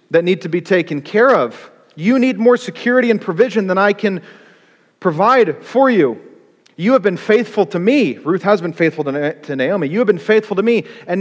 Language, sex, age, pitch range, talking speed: English, male, 40-59, 155-215 Hz, 205 wpm